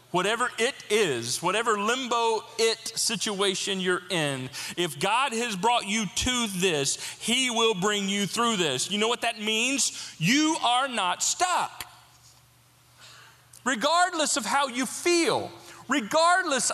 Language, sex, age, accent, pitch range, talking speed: English, male, 40-59, American, 175-255 Hz, 135 wpm